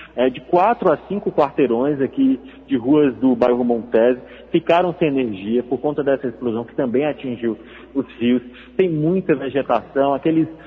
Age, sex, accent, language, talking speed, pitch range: 40-59, male, Brazilian, Portuguese, 155 wpm, 135-170 Hz